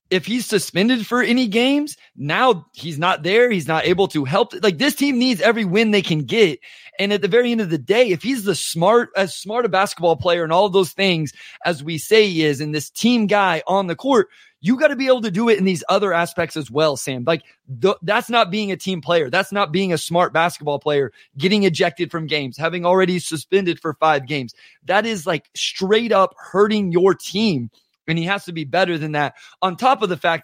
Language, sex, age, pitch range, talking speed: English, male, 20-39, 160-210 Hz, 235 wpm